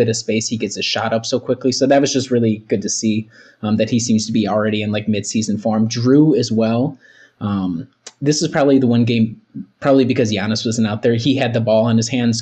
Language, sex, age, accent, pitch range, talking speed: English, male, 20-39, American, 110-135 Hz, 245 wpm